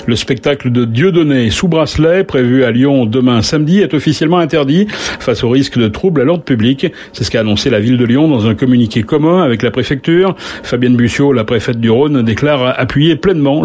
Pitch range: 115-145 Hz